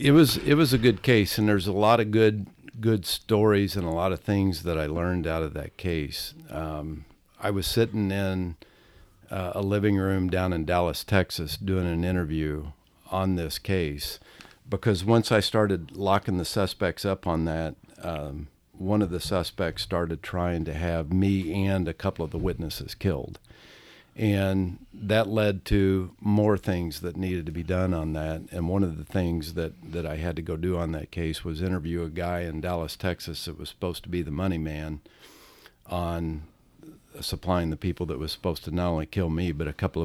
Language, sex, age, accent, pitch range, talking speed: English, male, 50-69, American, 80-100 Hz, 195 wpm